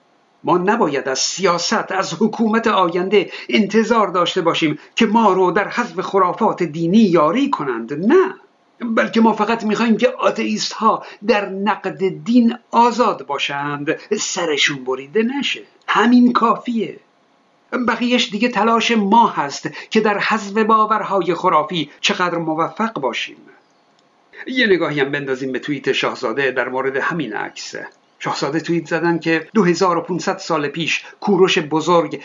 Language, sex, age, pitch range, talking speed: Persian, male, 50-69, 160-210 Hz, 130 wpm